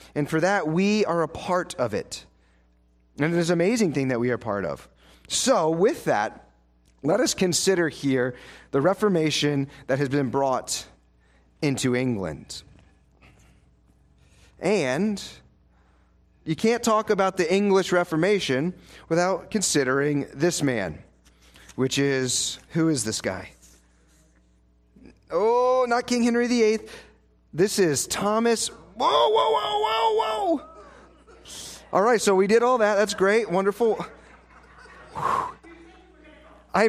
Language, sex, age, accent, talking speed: English, male, 30-49, American, 125 wpm